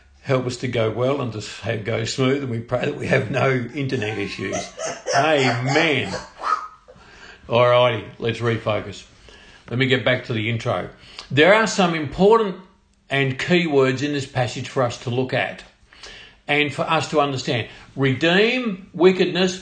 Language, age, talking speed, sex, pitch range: English, 50-69, 160 wpm, male, 125-165 Hz